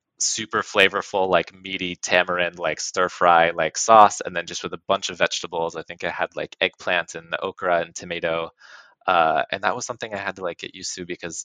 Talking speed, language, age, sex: 220 wpm, English, 20-39, male